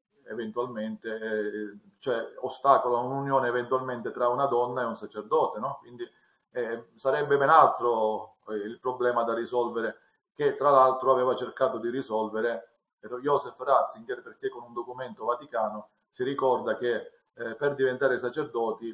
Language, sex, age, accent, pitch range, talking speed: Italian, male, 40-59, native, 120-145 Hz, 135 wpm